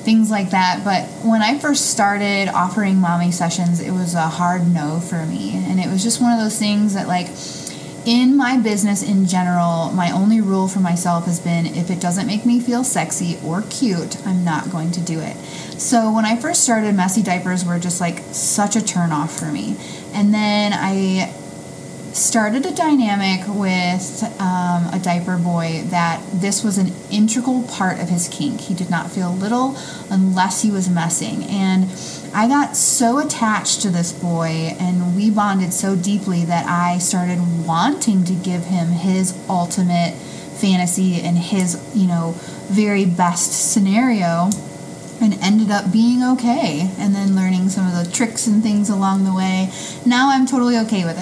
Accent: American